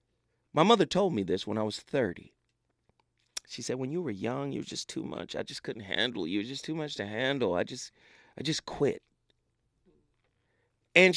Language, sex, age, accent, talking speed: English, male, 30-49, American, 205 wpm